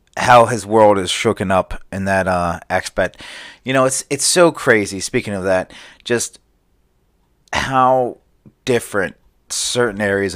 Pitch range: 90-120 Hz